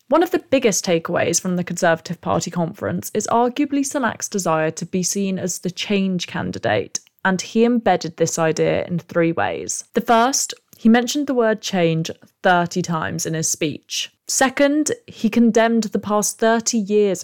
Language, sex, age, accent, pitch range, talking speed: English, female, 20-39, British, 170-225 Hz, 165 wpm